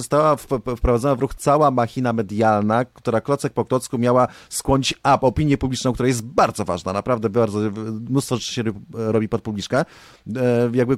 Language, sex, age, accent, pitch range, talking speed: Polish, male, 30-49, native, 105-130 Hz, 160 wpm